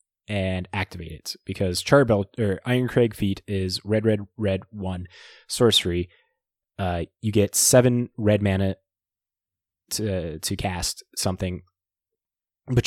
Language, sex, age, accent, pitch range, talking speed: English, male, 20-39, American, 95-110 Hz, 115 wpm